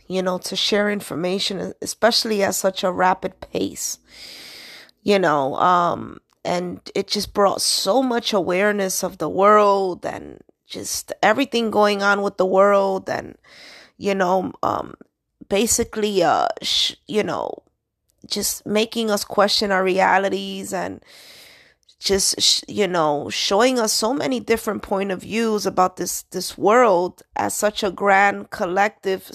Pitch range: 185-210 Hz